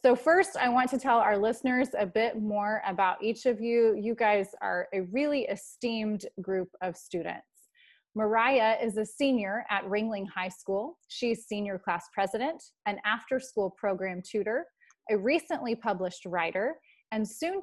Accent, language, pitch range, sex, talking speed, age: American, English, 195-255 Hz, female, 155 wpm, 20-39